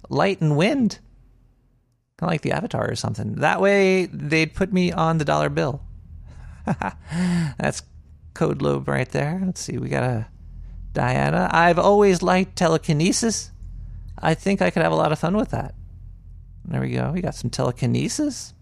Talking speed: 165 wpm